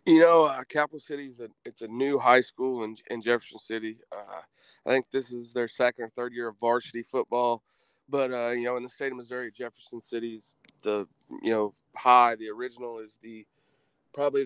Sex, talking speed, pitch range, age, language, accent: male, 200 wpm, 110-125 Hz, 20-39, English, American